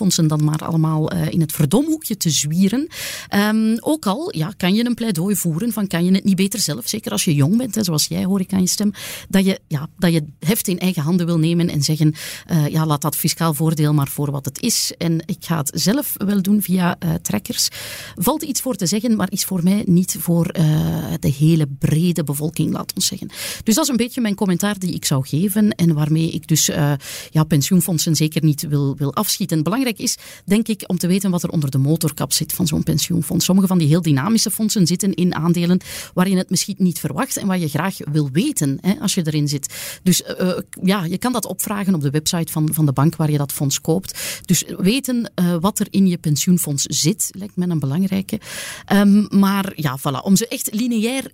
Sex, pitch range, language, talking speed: female, 155-200 Hz, Dutch, 230 wpm